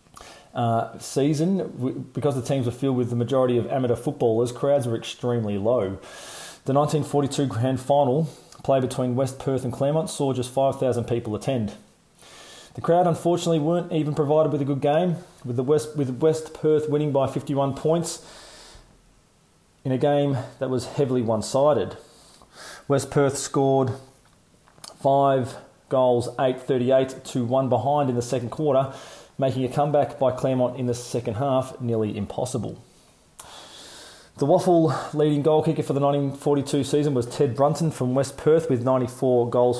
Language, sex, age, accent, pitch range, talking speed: English, male, 30-49, Australian, 125-155 Hz, 150 wpm